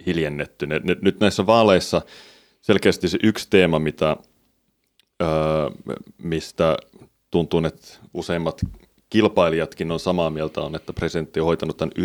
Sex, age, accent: male, 30-49, native